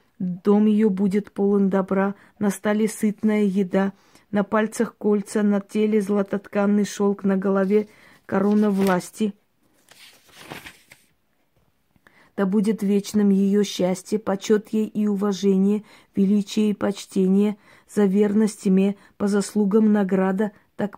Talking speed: 110 wpm